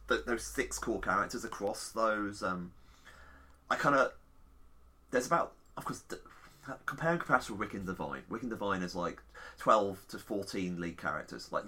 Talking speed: 160 wpm